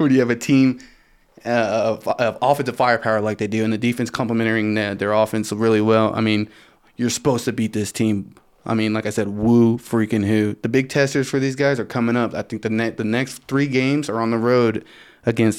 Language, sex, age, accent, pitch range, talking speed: English, male, 20-39, American, 110-125 Hz, 225 wpm